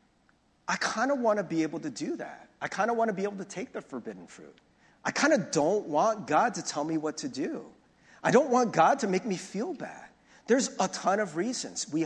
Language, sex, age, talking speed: English, male, 40-59, 245 wpm